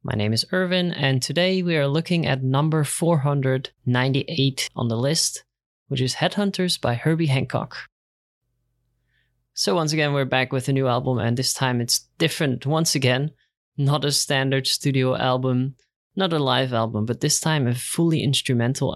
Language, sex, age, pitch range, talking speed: English, male, 20-39, 120-145 Hz, 165 wpm